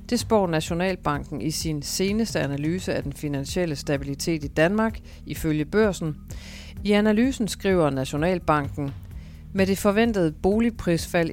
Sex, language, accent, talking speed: female, Danish, native, 120 wpm